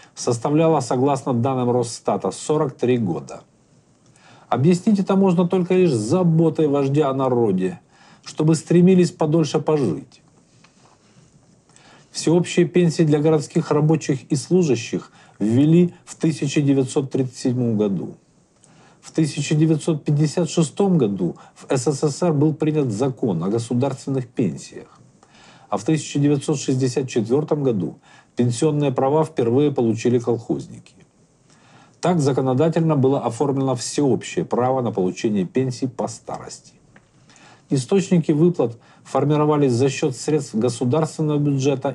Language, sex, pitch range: Russian, male, 130-165 Hz